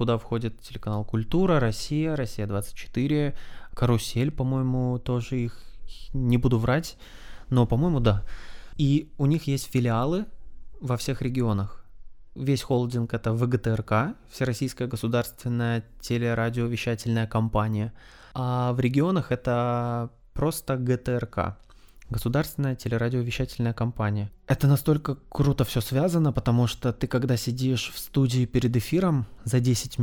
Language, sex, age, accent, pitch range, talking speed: Russian, male, 20-39, native, 110-130 Hz, 115 wpm